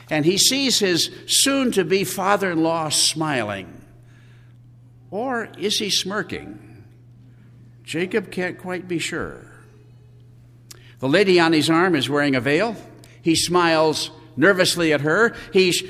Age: 60-79